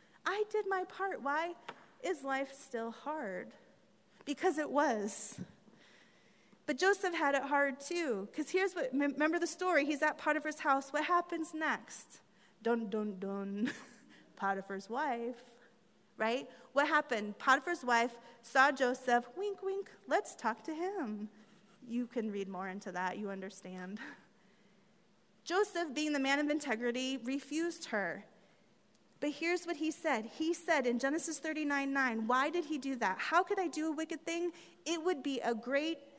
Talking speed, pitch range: 155 wpm, 225-310 Hz